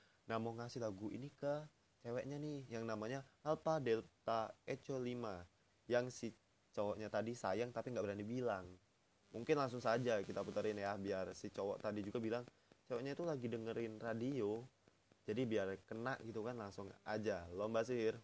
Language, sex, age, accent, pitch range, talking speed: Indonesian, male, 20-39, native, 100-120 Hz, 160 wpm